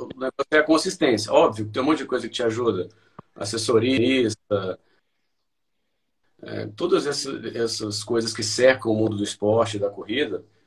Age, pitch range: 40-59, 105-125 Hz